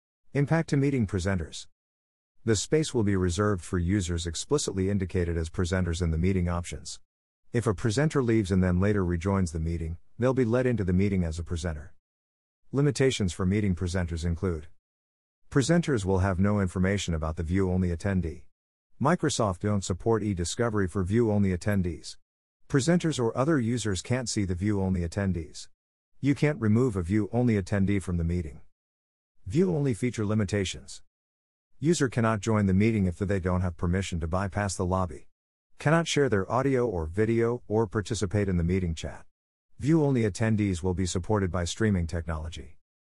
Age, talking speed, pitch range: 50-69, 160 wpm, 85-115 Hz